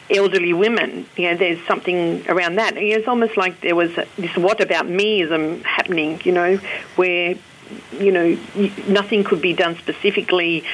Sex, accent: female, Australian